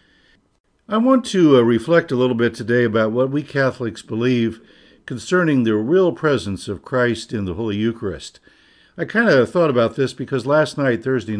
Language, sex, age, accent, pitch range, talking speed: English, male, 60-79, American, 115-145 Hz, 180 wpm